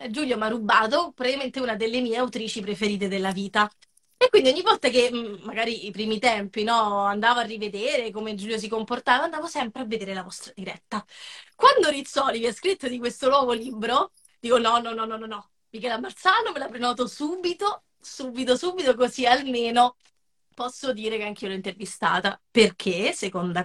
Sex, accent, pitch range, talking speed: female, native, 205-255 Hz, 180 wpm